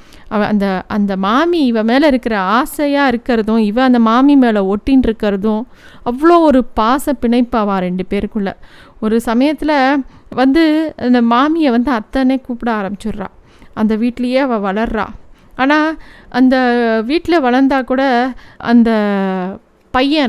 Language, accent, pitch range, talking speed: Tamil, native, 225-275 Hz, 120 wpm